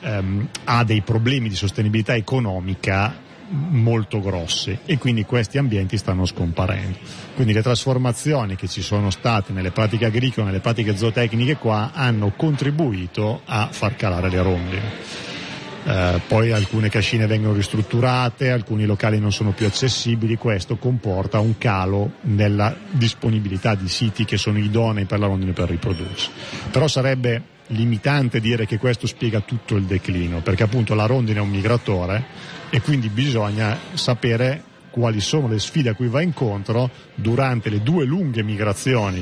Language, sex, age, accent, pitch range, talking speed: Italian, male, 40-59, native, 105-130 Hz, 150 wpm